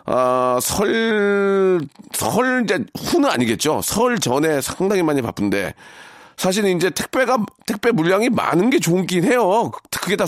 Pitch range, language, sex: 125-180 Hz, Korean, male